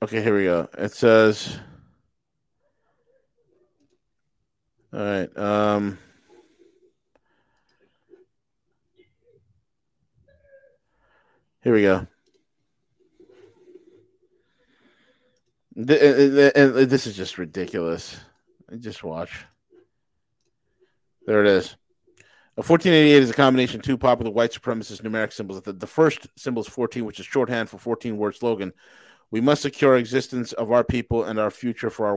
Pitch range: 110-140 Hz